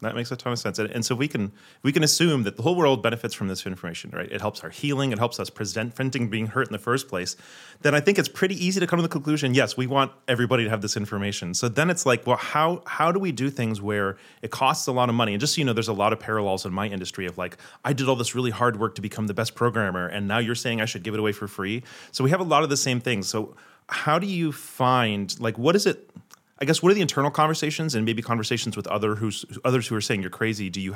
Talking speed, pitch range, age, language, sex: 290 wpm, 110-135 Hz, 30-49, English, male